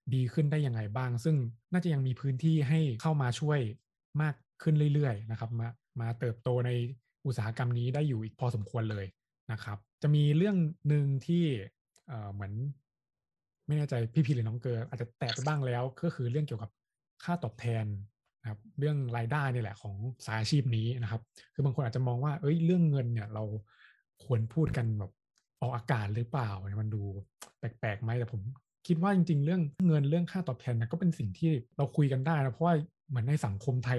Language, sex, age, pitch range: Thai, male, 20-39, 115-150 Hz